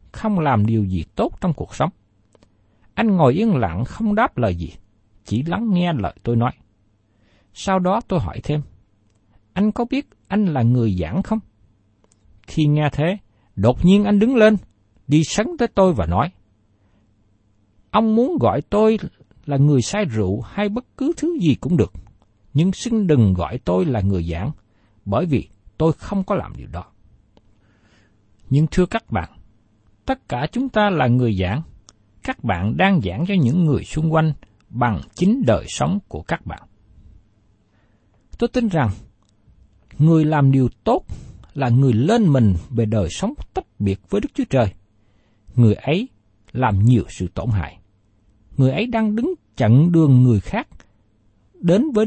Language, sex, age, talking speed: Vietnamese, male, 60-79, 165 wpm